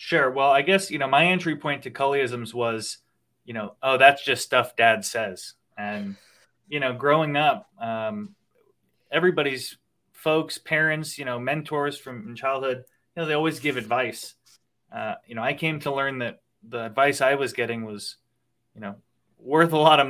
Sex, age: male, 20-39